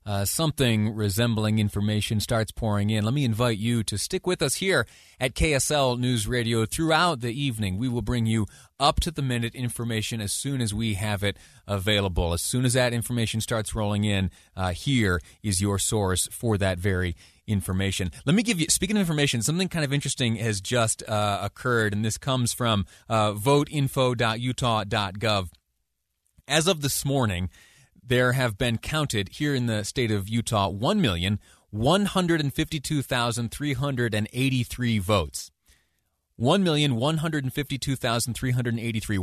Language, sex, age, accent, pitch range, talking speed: English, male, 30-49, American, 105-135 Hz, 140 wpm